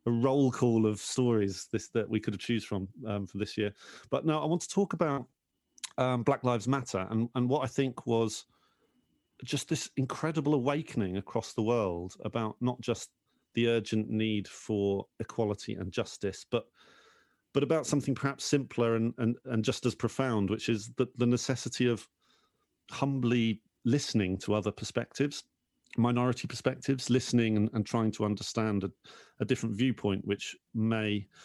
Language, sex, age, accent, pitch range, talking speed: English, male, 40-59, British, 105-130 Hz, 165 wpm